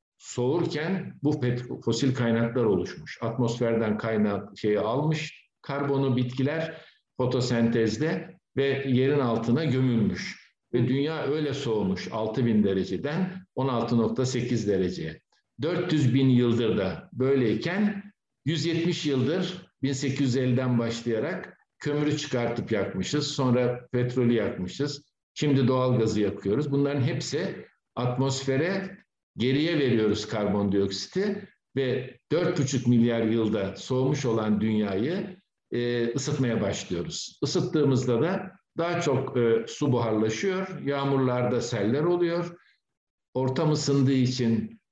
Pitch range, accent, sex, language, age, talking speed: 115-150 Hz, native, male, Turkish, 60-79, 90 wpm